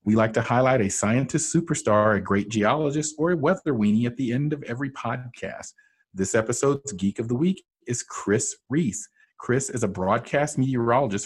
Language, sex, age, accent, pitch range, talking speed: English, male, 40-59, American, 105-140 Hz, 180 wpm